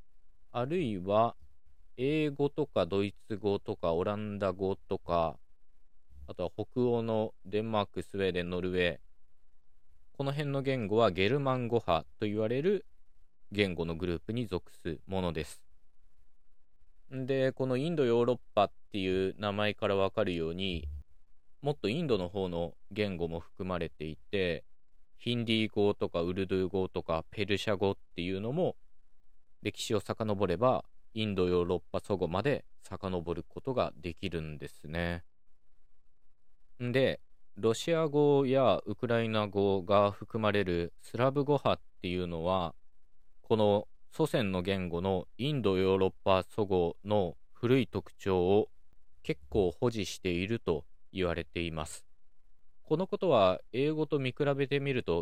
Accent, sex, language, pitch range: native, male, Japanese, 85-110 Hz